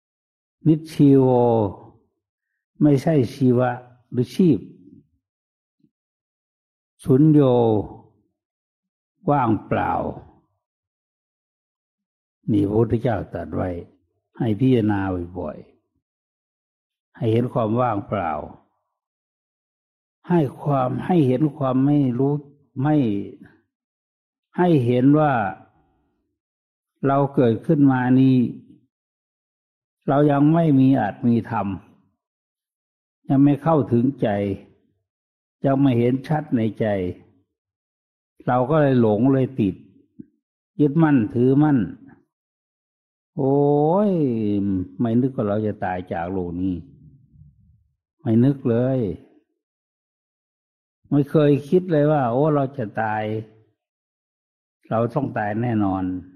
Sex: male